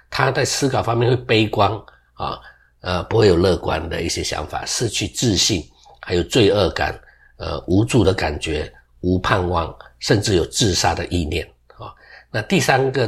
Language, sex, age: Chinese, male, 50-69